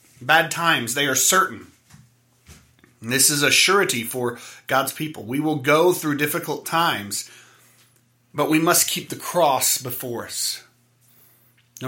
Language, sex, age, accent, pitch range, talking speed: English, male, 30-49, American, 120-160 Hz, 135 wpm